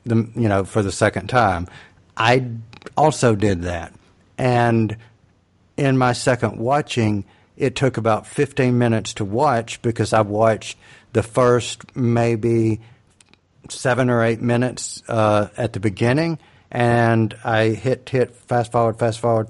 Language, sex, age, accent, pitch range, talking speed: English, male, 50-69, American, 105-125 Hz, 140 wpm